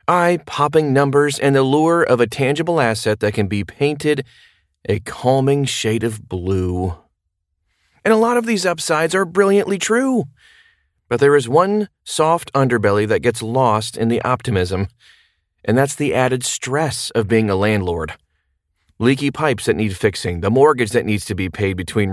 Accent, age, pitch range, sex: American, 30-49, 100-140 Hz, male